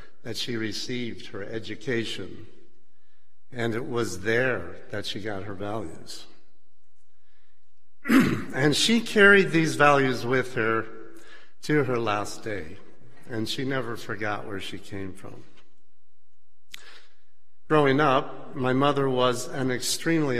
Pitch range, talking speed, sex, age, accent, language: 115-170 Hz, 120 wpm, male, 60-79, American, English